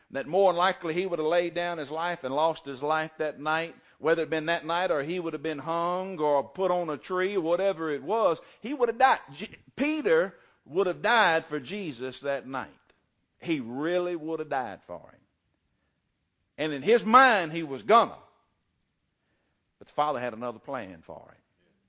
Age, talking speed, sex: 50-69, 200 wpm, male